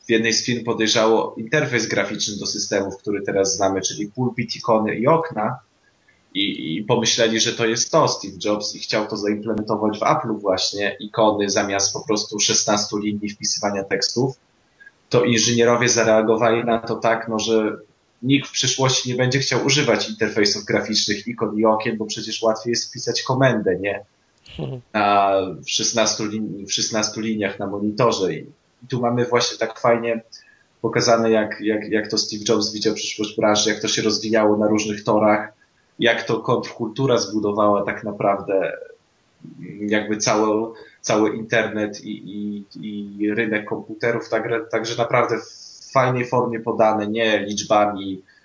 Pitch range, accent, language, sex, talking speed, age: 105-115 Hz, native, Polish, male, 155 wpm, 20-39